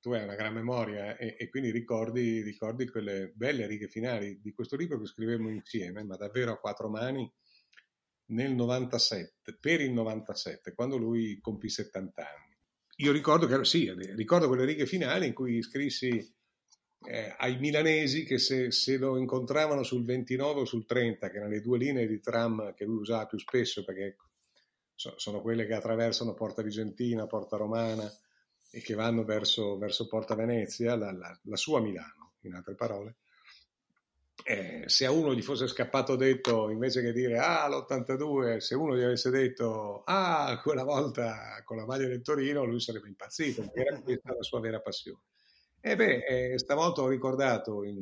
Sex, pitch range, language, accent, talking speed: male, 110-130 Hz, Italian, native, 170 wpm